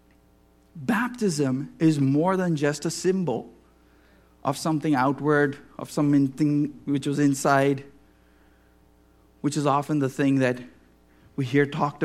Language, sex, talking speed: English, male, 120 wpm